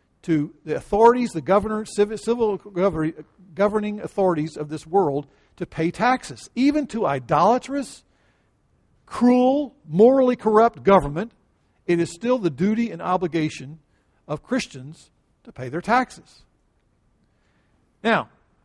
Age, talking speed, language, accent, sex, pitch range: 50-69, 115 wpm, English, American, male, 160-215 Hz